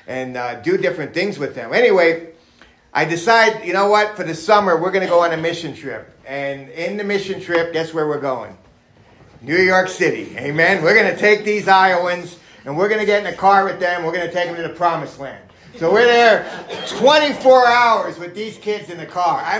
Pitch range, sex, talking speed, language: 145-195 Hz, male, 225 wpm, English